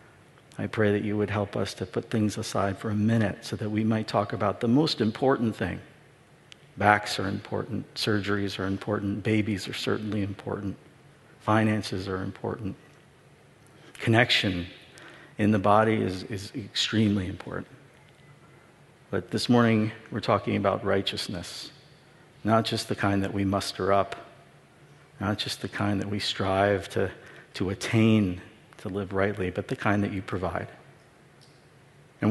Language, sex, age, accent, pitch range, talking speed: English, male, 50-69, American, 100-125 Hz, 150 wpm